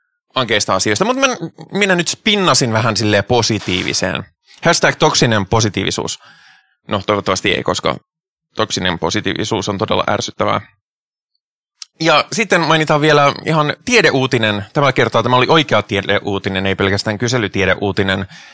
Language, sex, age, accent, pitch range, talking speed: Finnish, male, 20-39, native, 100-150 Hz, 120 wpm